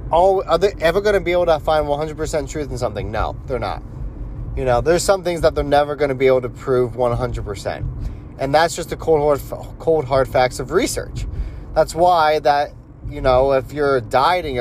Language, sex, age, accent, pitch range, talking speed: English, male, 30-49, American, 125-155 Hz, 225 wpm